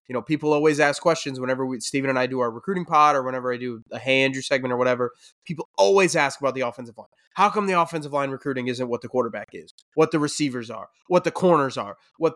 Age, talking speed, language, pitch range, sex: 20-39, 250 wpm, English, 125-155 Hz, male